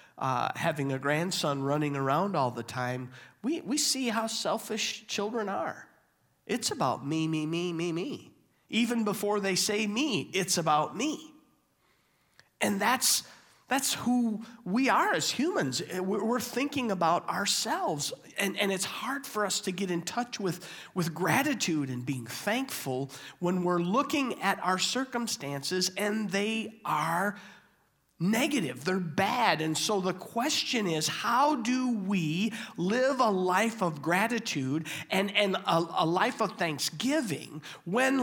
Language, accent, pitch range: English, American, 180-245 Hz